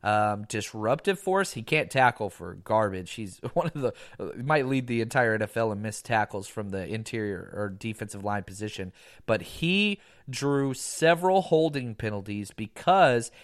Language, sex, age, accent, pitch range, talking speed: English, male, 30-49, American, 110-155 Hz, 155 wpm